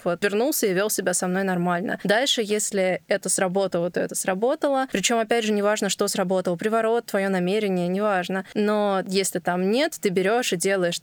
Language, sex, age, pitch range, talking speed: Russian, female, 20-39, 190-220 Hz, 175 wpm